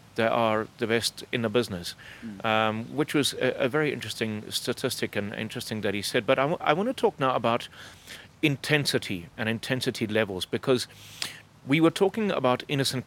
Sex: male